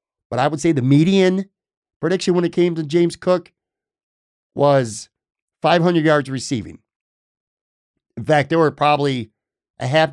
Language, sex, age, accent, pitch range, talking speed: English, male, 50-69, American, 120-150 Hz, 140 wpm